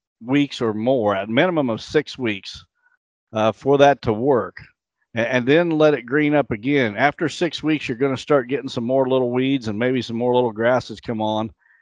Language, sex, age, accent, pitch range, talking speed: English, male, 50-69, American, 110-140 Hz, 210 wpm